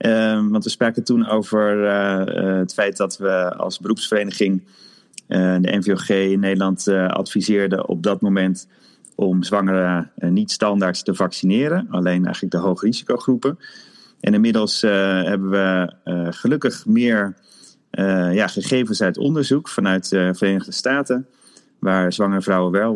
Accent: Dutch